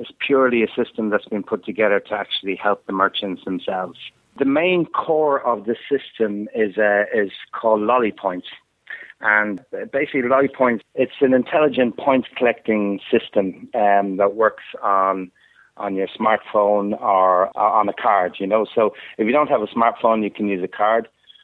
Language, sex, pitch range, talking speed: English, male, 100-120 Hz, 165 wpm